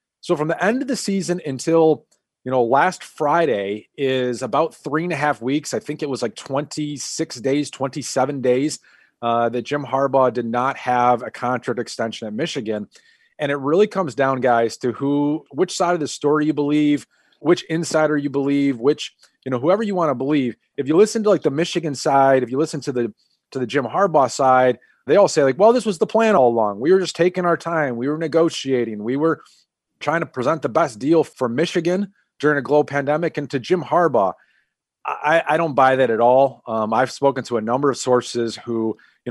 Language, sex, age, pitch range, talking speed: English, male, 30-49, 125-160 Hz, 210 wpm